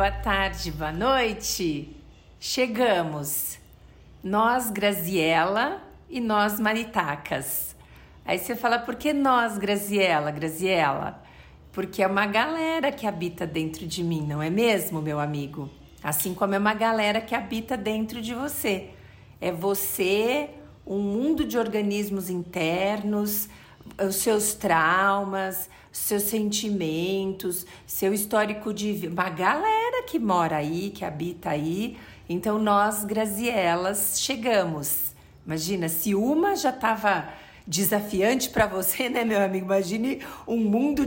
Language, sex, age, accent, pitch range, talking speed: Portuguese, female, 50-69, Brazilian, 180-230 Hz, 125 wpm